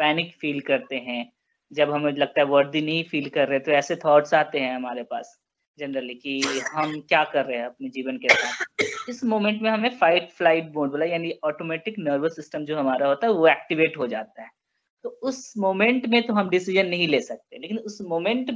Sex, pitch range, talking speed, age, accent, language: female, 155-225 Hz, 125 wpm, 20-39, native, Hindi